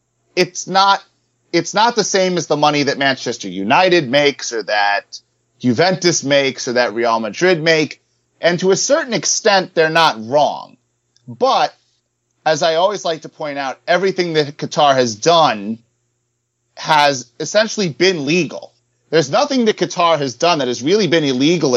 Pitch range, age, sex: 120-170 Hz, 30-49, male